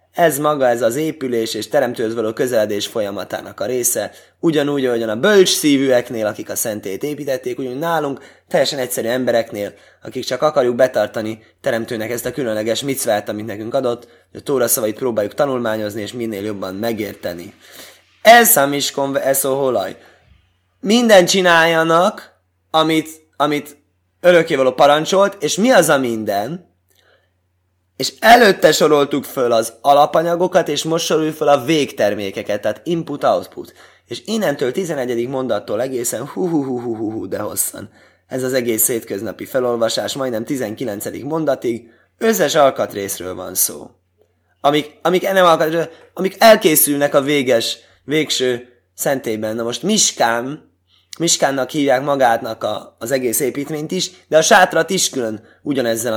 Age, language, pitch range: 20-39, Hungarian, 110-155 Hz